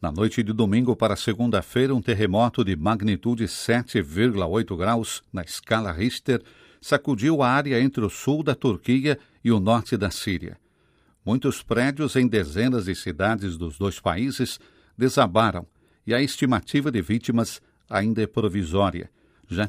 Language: Portuguese